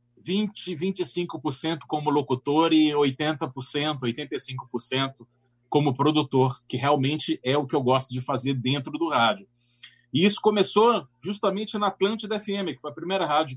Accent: Brazilian